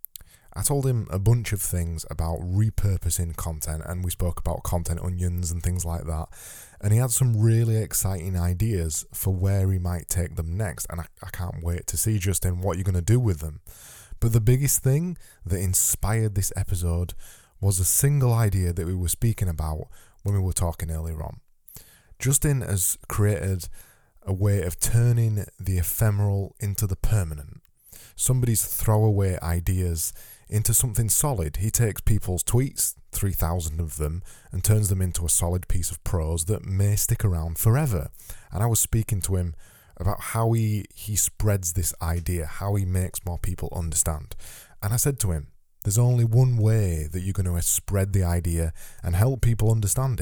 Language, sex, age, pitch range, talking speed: English, male, 20-39, 85-110 Hz, 180 wpm